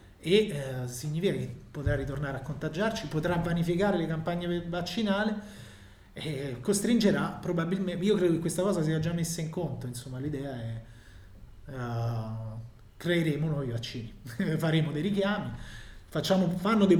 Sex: male